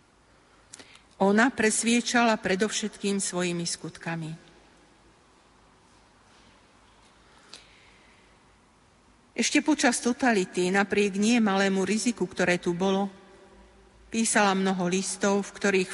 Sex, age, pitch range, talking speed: female, 50-69, 180-220 Hz, 75 wpm